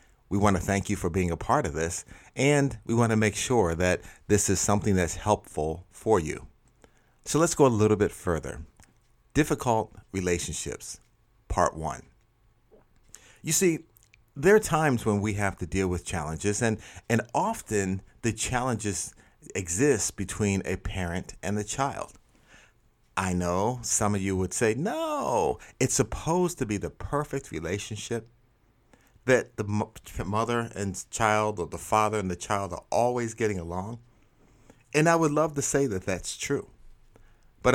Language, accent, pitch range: English, American, 95-125 Hz